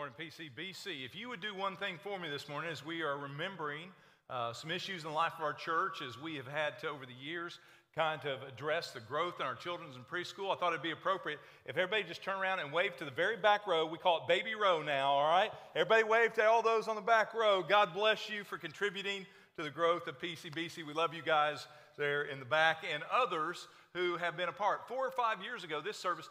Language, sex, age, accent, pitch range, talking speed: English, male, 40-59, American, 150-195 Hz, 250 wpm